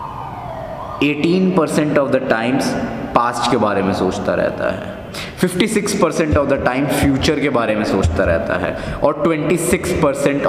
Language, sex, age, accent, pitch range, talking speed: Hindi, male, 20-39, native, 115-150 Hz, 165 wpm